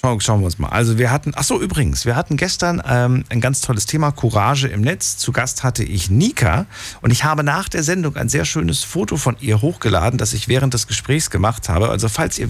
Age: 40-59